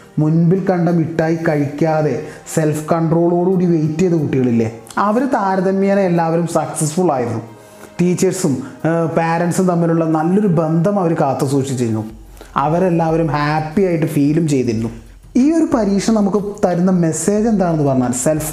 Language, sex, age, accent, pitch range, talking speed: Malayalam, male, 20-39, native, 140-180 Hz, 110 wpm